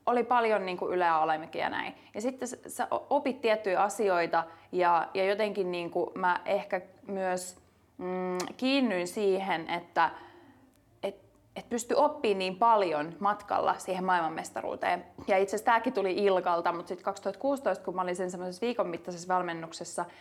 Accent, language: native, Finnish